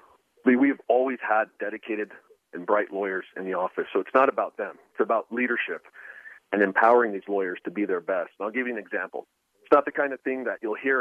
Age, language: 40-59, English